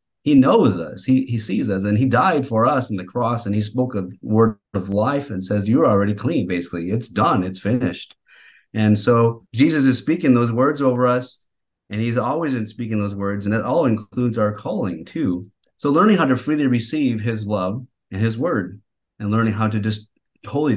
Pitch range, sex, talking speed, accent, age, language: 100-125 Hz, male, 210 wpm, American, 30-49, English